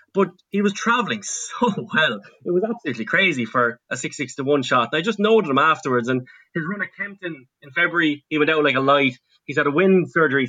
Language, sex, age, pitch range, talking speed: English, male, 20-39, 125-160 Hz, 235 wpm